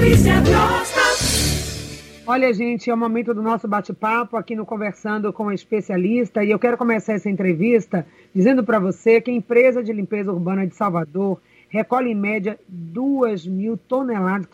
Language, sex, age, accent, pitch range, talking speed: Portuguese, female, 40-59, Brazilian, 195-240 Hz, 155 wpm